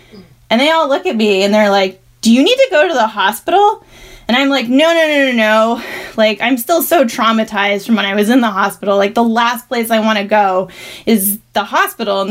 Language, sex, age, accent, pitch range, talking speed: English, female, 20-39, American, 200-245 Hz, 240 wpm